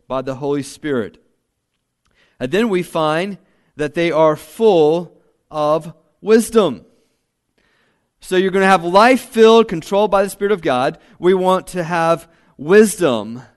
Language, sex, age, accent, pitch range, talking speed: English, male, 40-59, American, 155-205 Hz, 140 wpm